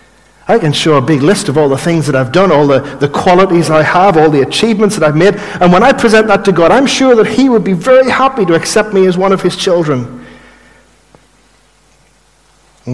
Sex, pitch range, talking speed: male, 125-185 Hz, 225 wpm